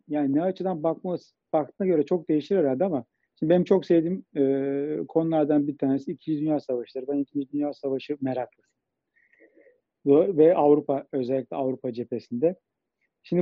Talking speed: 150 wpm